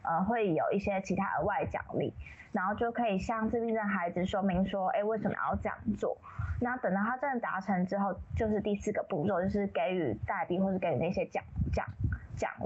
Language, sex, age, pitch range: Chinese, female, 20-39, 195-240 Hz